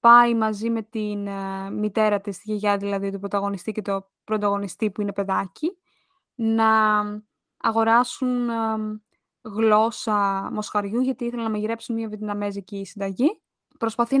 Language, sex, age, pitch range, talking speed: Greek, female, 20-39, 205-240 Hz, 130 wpm